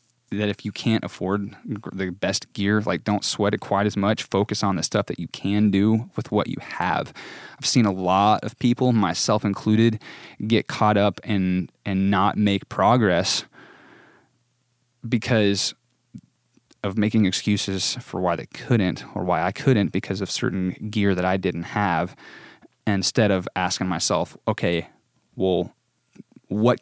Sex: male